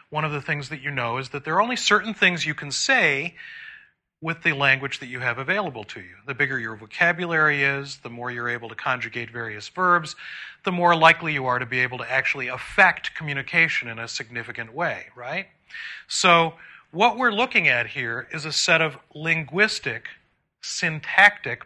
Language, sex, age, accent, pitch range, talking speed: English, male, 40-59, American, 125-160 Hz, 190 wpm